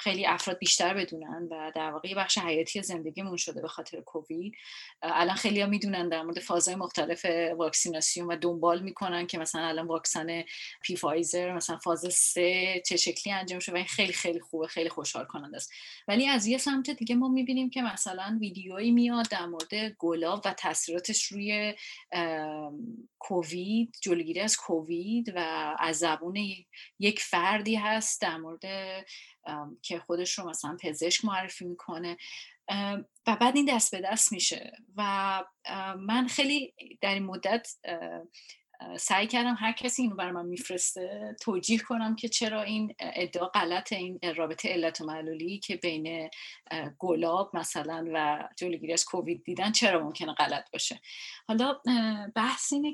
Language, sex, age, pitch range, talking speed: Persian, female, 30-49, 170-225 Hz, 150 wpm